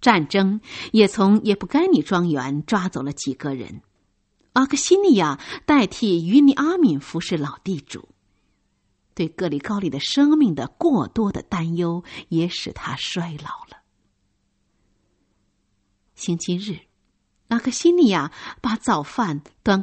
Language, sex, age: Chinese, female, 50-69